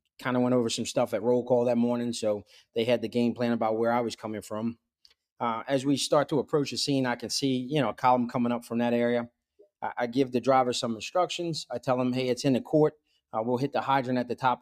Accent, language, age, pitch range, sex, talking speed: American, English, 30-49, 115-135 Hz, male, 270 wpm